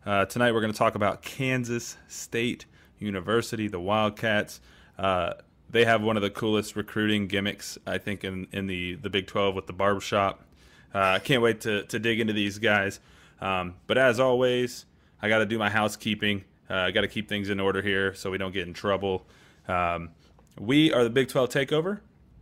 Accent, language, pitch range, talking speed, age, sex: American, English, 100-115 Hz, 200 wpm, 20-39, male